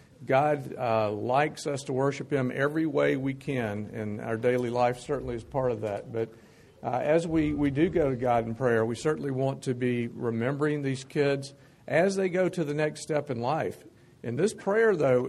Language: English